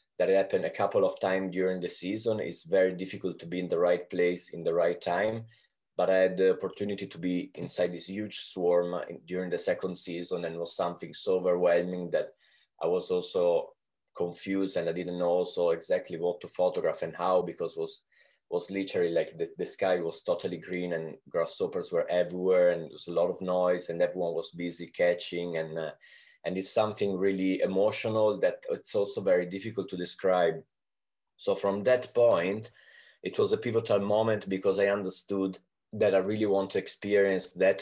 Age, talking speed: 20-39, 190 wpm